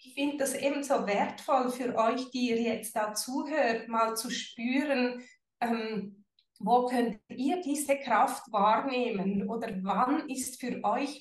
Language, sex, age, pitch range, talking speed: German, female, 30-49, 220-260 Hz, 145 wpm